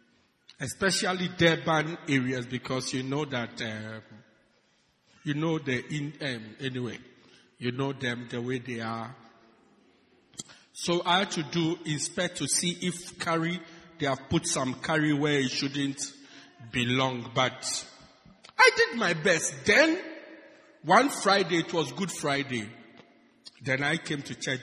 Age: 50-69